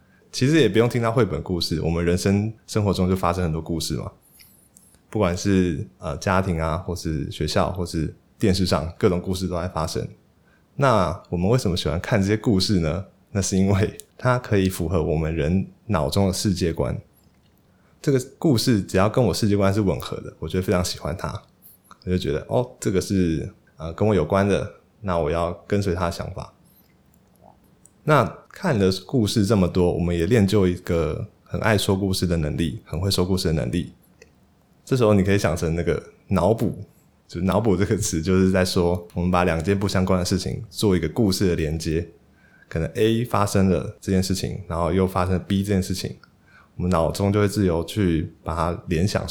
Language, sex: Chinese, male